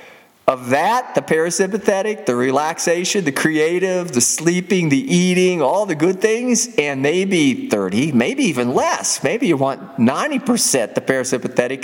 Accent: American